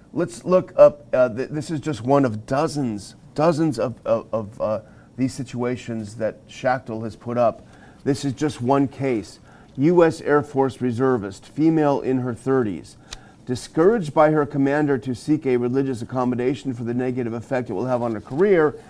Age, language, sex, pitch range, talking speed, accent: 40-59, English, male, 115-145 Hz, 175 wpm, American